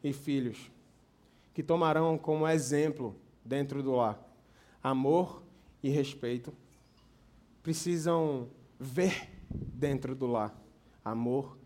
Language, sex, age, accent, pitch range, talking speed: Portuguese, male, 20-39, Brazilian, 125-175 Hz, 95 wpm